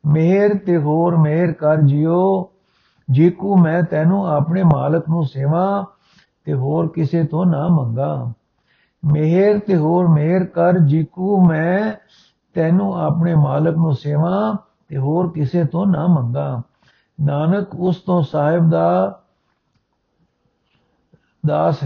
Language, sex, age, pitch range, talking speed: Punjabi, male, 60-79, 150-180 Hz, 120 wpm